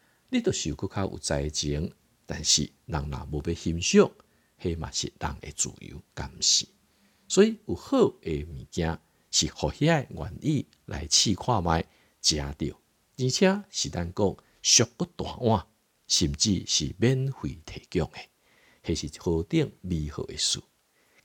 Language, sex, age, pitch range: Chinese, male, 50-69, 75-100 Hz